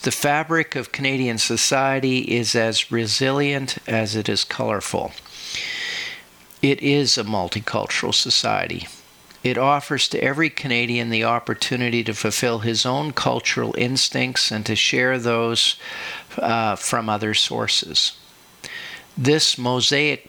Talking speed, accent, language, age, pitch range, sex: 120 wpm, American, English, 50-69, 115-135 Hz, male